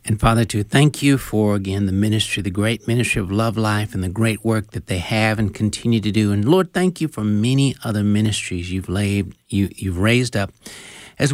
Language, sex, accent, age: English, male, American, 60-79